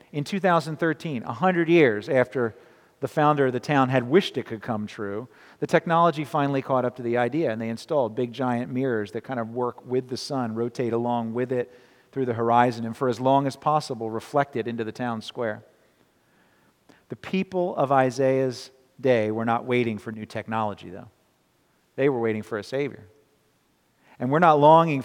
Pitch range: 115-135 Hz